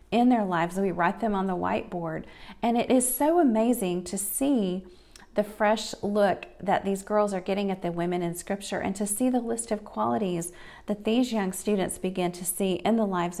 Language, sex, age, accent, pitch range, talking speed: English, female, 40-59, American, 180-220 Hz, 205 wpm